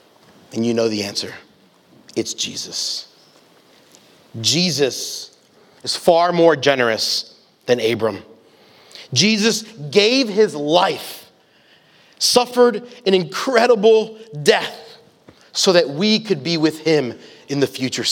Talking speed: 105 wpm